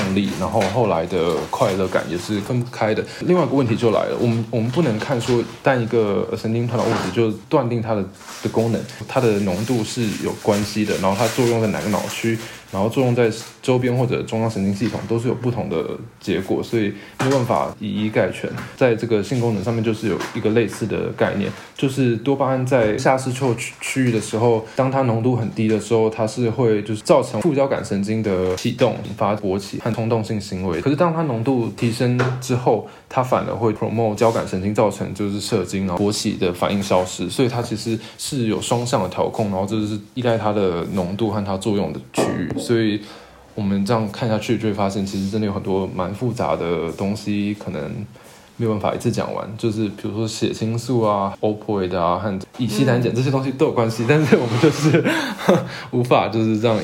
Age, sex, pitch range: 20-39, male, 105-120 Hz